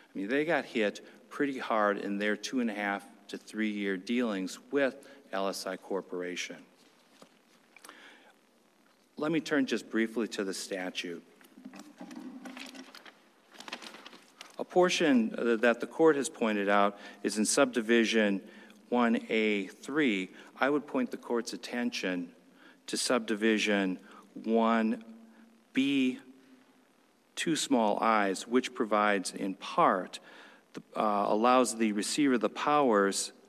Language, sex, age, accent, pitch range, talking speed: English, male, 50-69, American, 105-150 Hz, 115 wpm